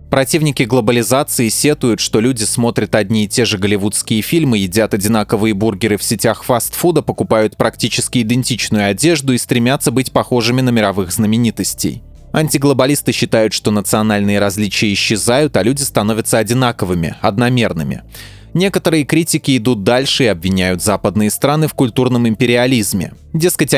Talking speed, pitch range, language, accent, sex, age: 130 wpm, 110-135 Hz, Russian, native, male, 20-39